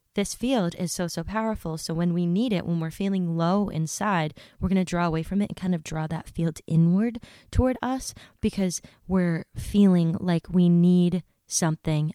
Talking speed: 195 wpm